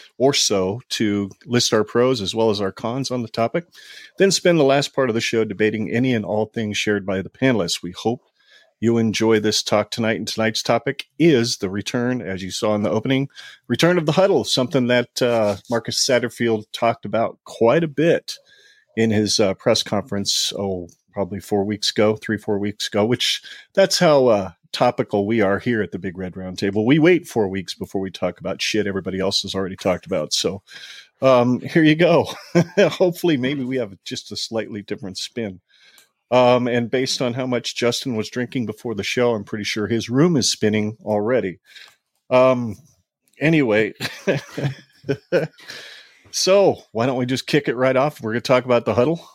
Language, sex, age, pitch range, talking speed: English, male, 40-59, 105-130 Hz, 190 wpm